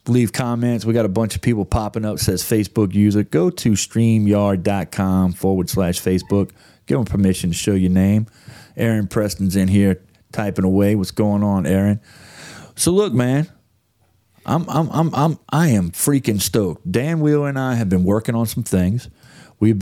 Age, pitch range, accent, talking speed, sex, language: 30-49, 100-125 Hz, American, 175 wpm, male, English